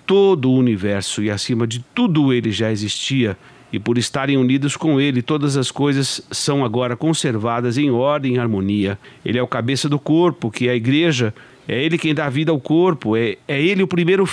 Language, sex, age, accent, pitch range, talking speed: Portuguese, male, 60-79, Brazilian, 115-150 Hz, 200 wpm